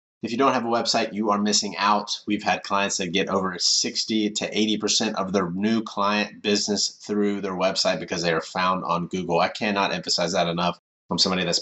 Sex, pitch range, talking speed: male, 95-115 Hz, 210 wpm